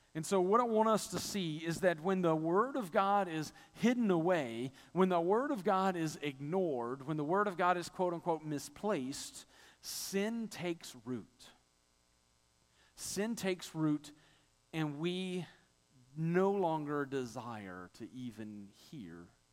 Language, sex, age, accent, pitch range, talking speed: English, male, 40-59, American, 125-175 Hz, 145 wpm